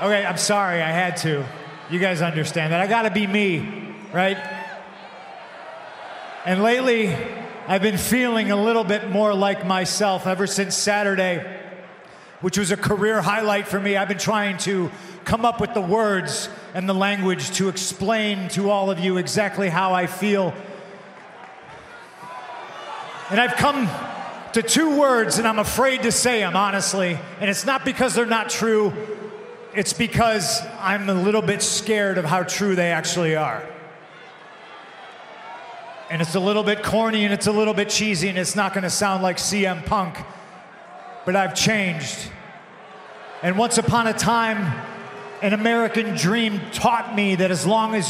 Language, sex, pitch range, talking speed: English, male, 185-220 Hz, 160 wpm